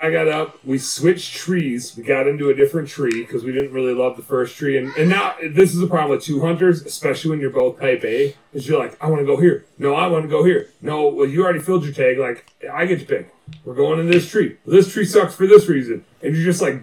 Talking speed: 275 wpm